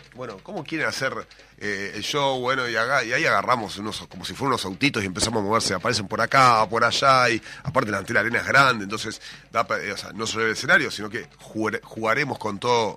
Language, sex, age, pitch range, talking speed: Spanish, male, 30-49, 100-150 Hz, 230 wpm